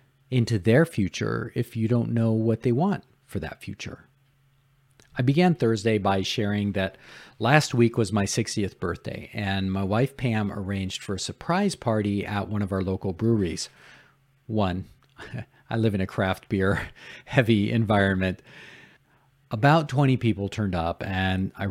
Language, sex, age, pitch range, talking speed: English, male, 50-69, 100-135 Hz, 155 wpm